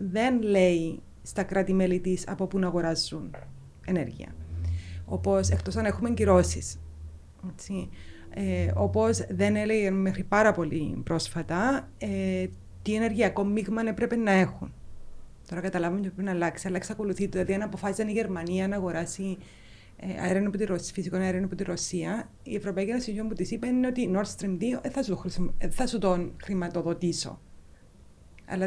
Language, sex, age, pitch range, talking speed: Greek, female, 30-49, 160-200 Hz, 140 wpm